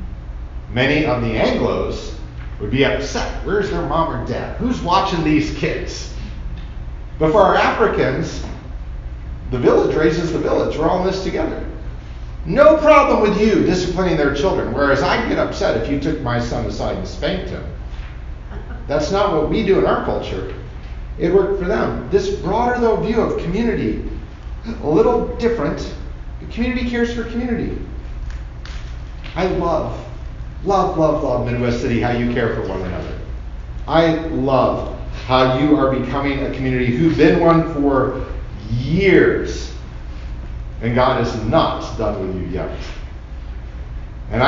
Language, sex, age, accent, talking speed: English, male, 40-59, American, 150 wpm